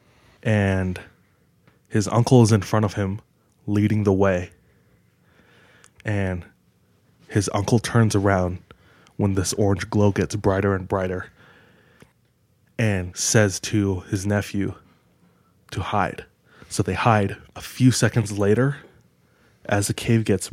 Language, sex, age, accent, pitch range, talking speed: English, male, 20-39, American, 95-110 Hz, 125 wpm